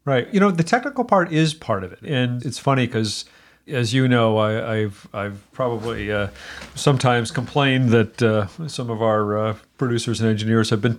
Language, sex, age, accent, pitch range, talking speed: English, male, 40-59, American, 105-125 Hz, 190 wpm